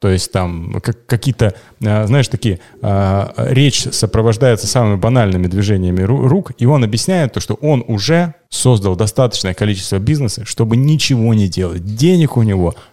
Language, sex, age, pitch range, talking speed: Russian, male, 30-49, 115-170 Hz, 140 wpm